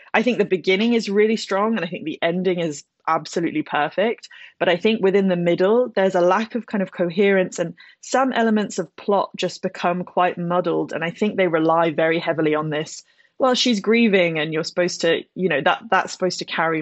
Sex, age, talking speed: female, 20-39, 215 wpm